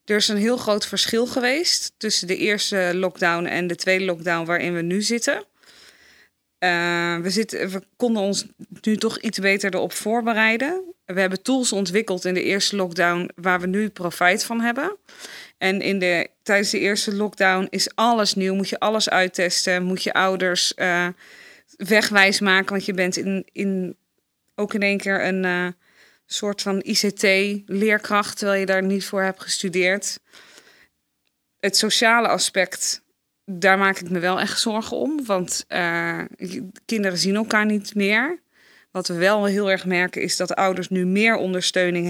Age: 20-39